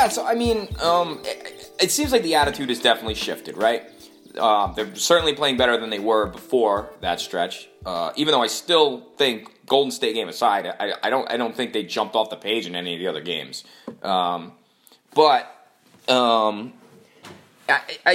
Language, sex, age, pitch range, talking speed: English, male, 20-39, 105-145 Hz, 190 wpm